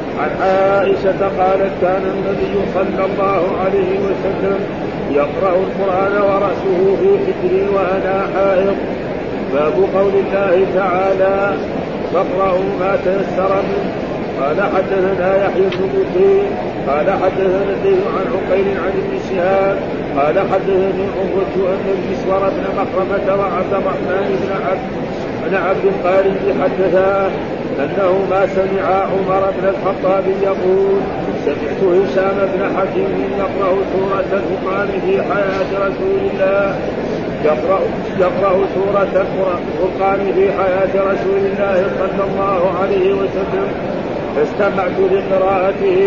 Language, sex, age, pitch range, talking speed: Arabic, male, 50-69, 190-195 Hz, 100 wpm